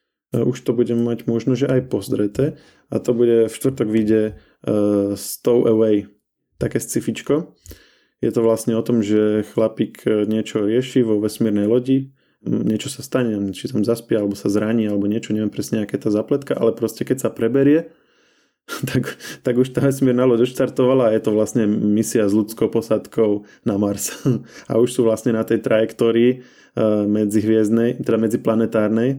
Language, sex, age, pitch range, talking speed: Slovak, male, 20-39, 105-120 Hz, 160 wpm